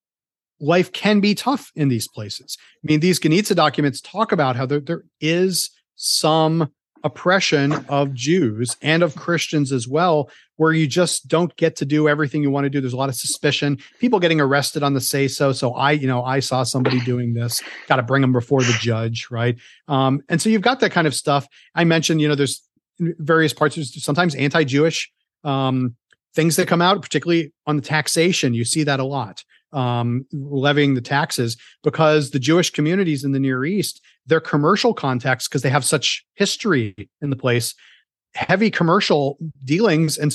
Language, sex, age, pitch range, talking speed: English, male, 40-59, 135-170 Hz, 190 wpm